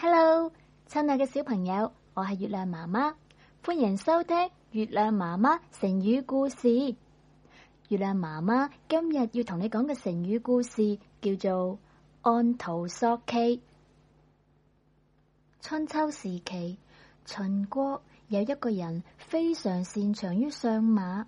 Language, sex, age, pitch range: Chinese, female, 20-39, 200-275 Hz